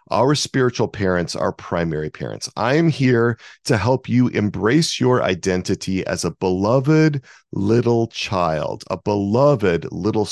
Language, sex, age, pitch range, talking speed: English, male, 40-59, 95-125 Hz, 135 wpm